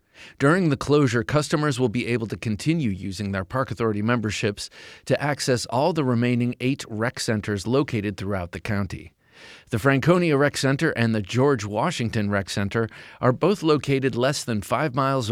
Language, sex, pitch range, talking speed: English, male, 105-145 Hz, 170 wpm